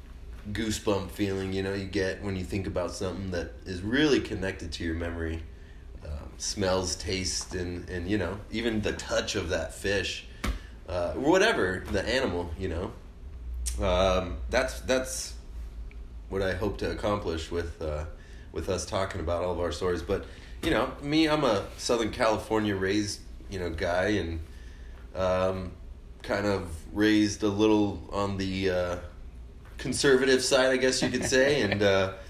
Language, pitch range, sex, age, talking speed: English, 80-105 Hz, male, 20-39, 160 wpm